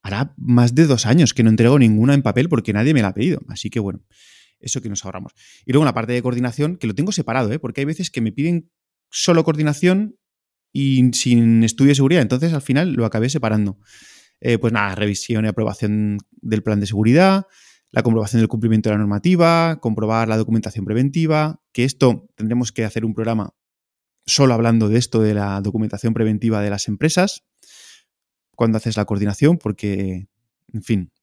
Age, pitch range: 20-39, 110-140 Hz